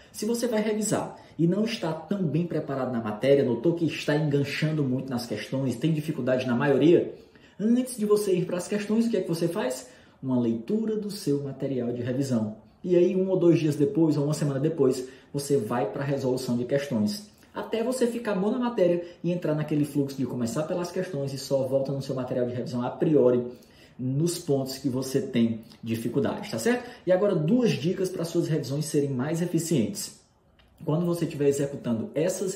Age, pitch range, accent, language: 20-39, 130-180 Hz, Brazilian, Portuguese